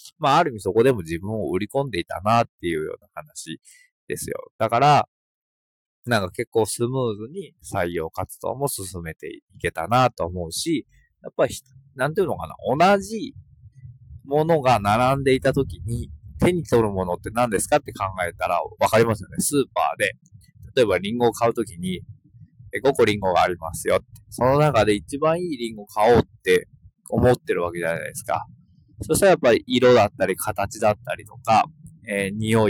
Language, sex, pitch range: Japanese, male, 105-150 Hz